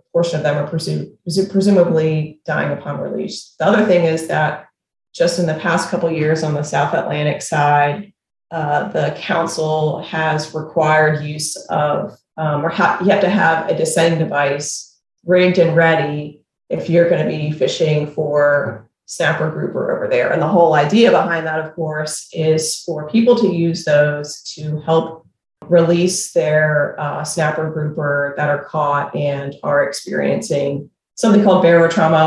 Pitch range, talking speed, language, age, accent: 150-185 Hz, 160 wpm, English, 30-49, American